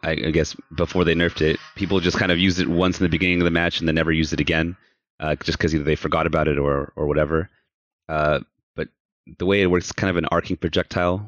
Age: 30-49